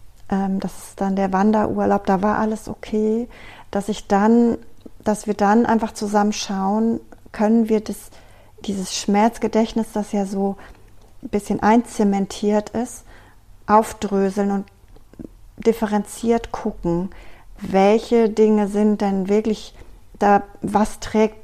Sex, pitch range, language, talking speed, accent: female, 195-215 Hz, German, 120 wpm, German